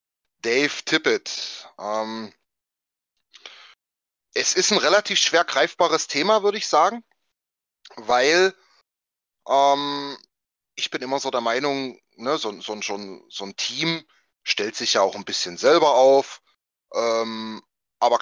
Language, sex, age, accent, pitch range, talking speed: German, male, 30-49, German, 110-140 Hz, 125 wpm